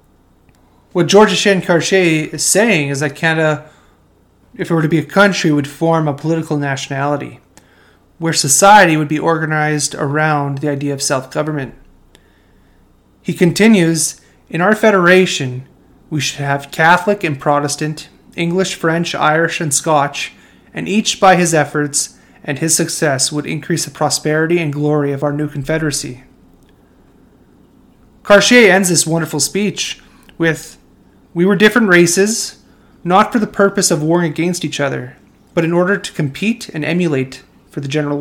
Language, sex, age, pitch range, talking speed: English, male, 30-49, 145-175 Hz, 150 wpm